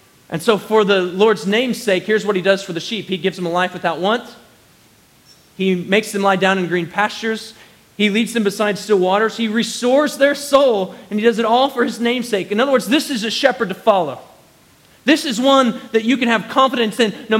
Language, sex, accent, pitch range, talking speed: English, male, American, 200-245 Hz, 225 wpm